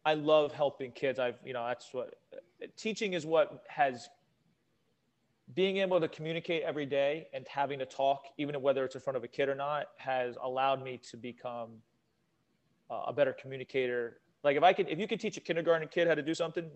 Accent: American